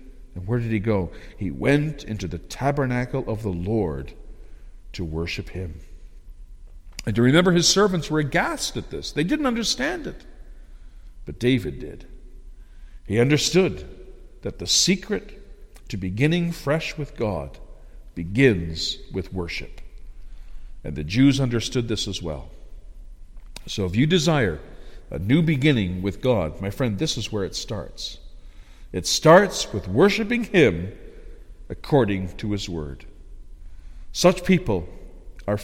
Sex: male